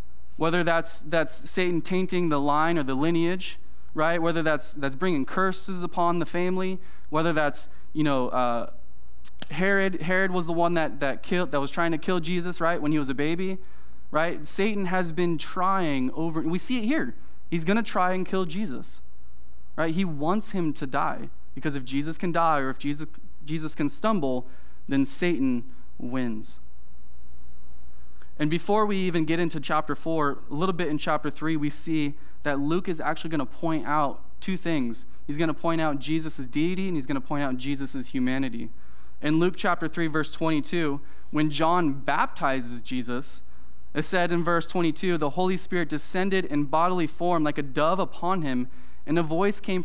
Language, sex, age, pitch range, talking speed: English, male, 20-39, 140-180 Hz, 180 wpm